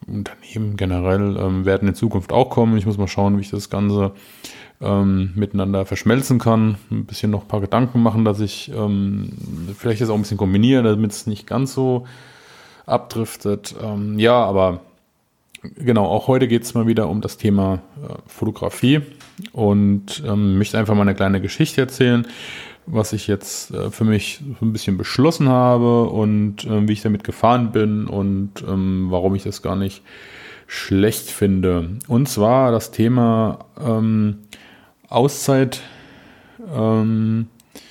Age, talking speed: 30-49, 160 wpm